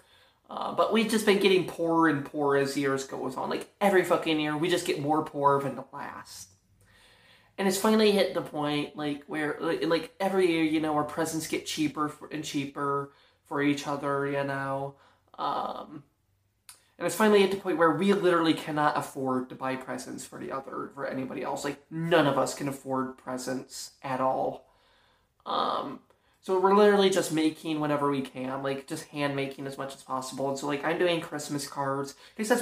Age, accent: 20-39, American